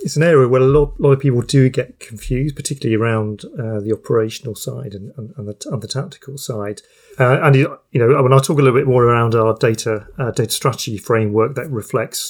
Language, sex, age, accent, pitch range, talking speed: English, male, 40-59, British, 115-135 Hz, 230 wpm